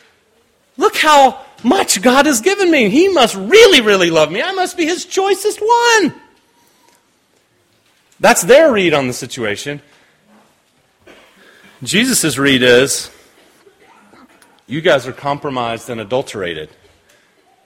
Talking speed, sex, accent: 115 wpm, male, American